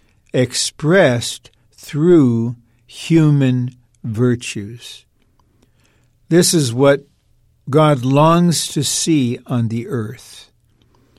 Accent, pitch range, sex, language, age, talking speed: American, 115-150 Hz, male, English, 60-79, 75 wpm